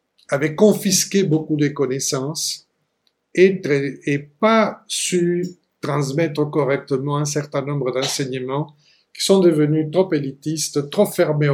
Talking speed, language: 115 wpm, French